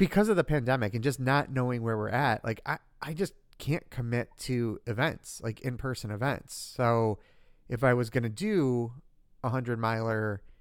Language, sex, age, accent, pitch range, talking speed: English, male, 40-59, American, 110-135 Hz, 180 wpm